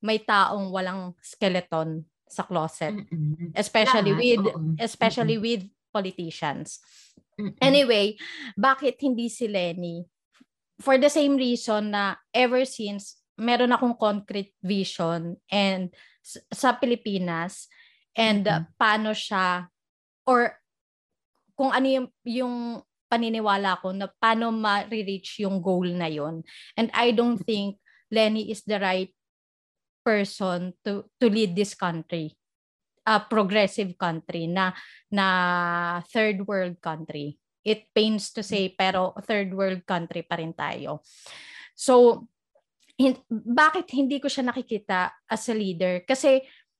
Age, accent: 20-39, native